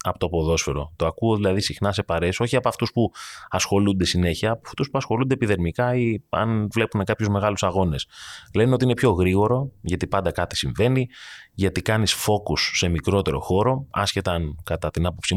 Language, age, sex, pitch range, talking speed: Greek, 20-39, male, 85-115 Hz, 175 wpm